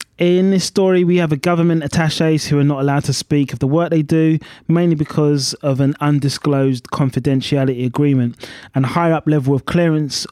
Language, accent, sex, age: English, British, male, 20-39